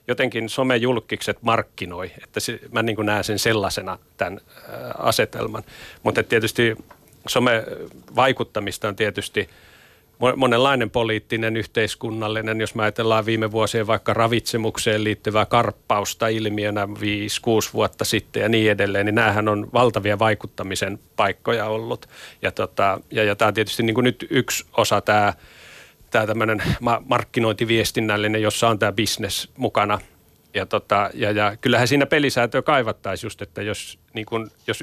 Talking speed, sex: 140 wpm, male